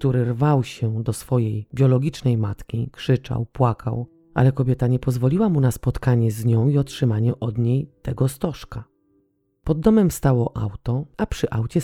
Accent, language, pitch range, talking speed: native, Polish, 115-155 Hz, 155 wpm